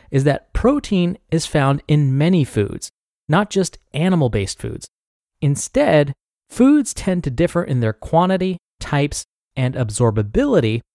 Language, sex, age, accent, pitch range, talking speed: English, male, 30-49, American, 120-180 Hz, 125 wpm